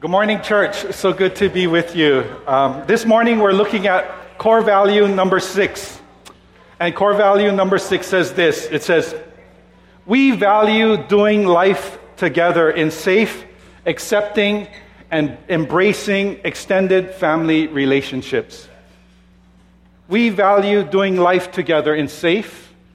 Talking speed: 125 wpm